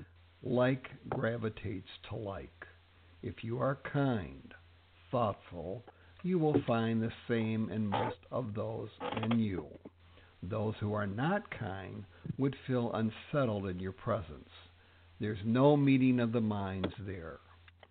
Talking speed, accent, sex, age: 125 wpm, American, male, 60-79